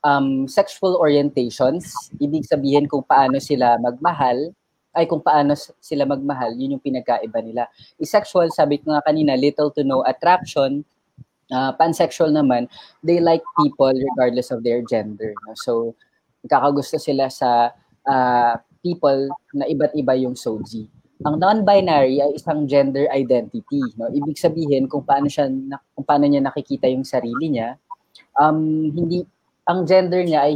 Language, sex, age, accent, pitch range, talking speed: Filipino, female, 20-39, native, 130-160 Hz, 140 wpm